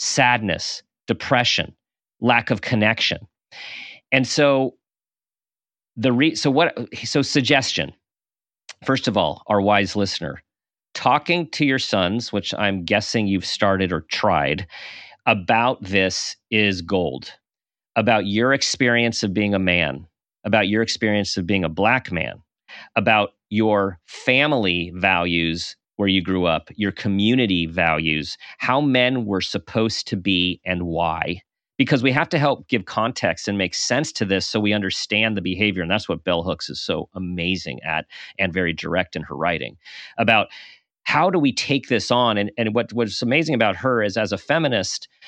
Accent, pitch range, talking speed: American, 95-125 Hz, 155 wpm